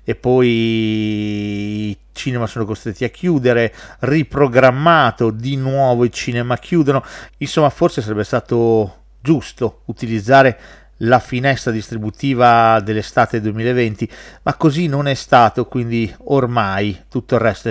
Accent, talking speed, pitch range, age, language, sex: native, 120 wpm, 115-155 Hz, 40-59, Italian, male